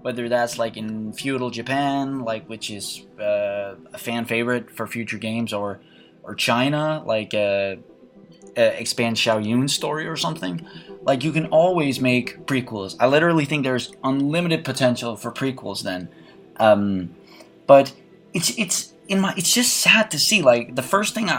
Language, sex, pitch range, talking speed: English, male, 110-160 Hz, 165 wpm